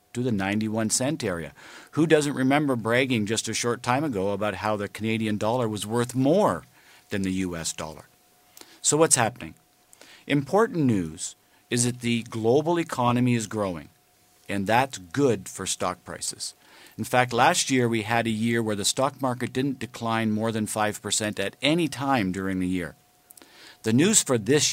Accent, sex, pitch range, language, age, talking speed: American, male, 105-125 Hz, English, 50-69, 170 wpm